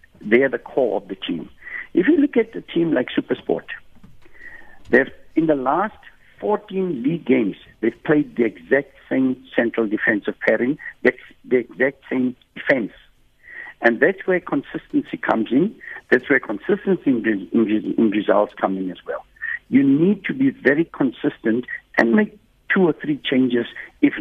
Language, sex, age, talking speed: English, male, 60-79, 155 wpm